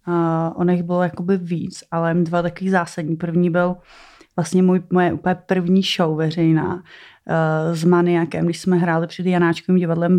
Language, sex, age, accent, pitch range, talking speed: Czech, female, 30-49, native, 170-185 Hz, 165 wpm